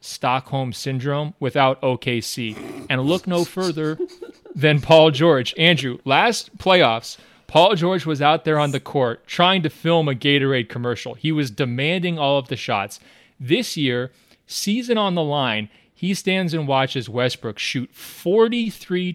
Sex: male